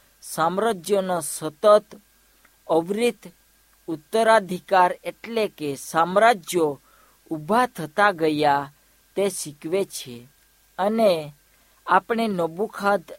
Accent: native